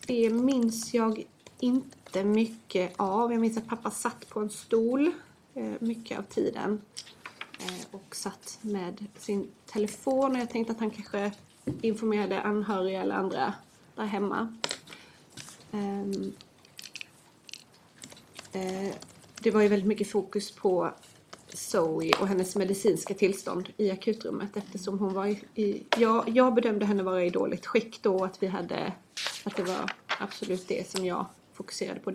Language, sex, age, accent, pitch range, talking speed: Swedish, female, 30-49, native, 195-225 Hz, 135 wpm